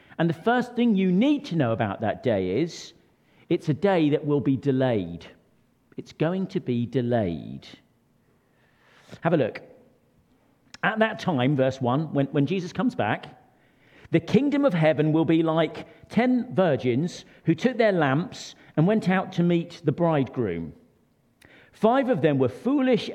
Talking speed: 160 wpm